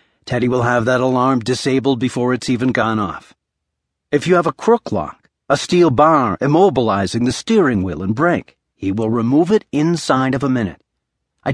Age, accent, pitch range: 50-69, American, 115-175 Hz